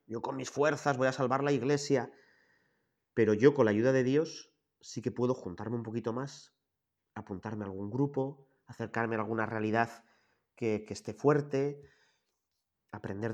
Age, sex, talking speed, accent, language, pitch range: 30-49, male, 160 wpm, Spanish, Spanish, 110-140 Hz